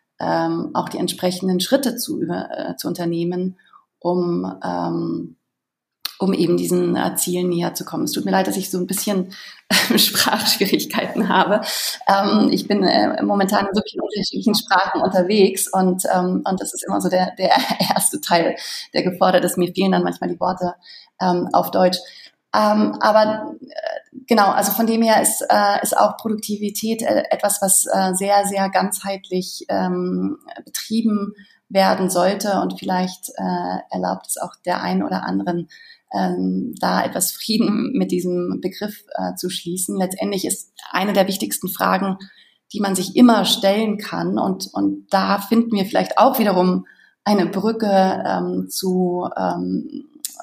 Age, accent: 30-49, German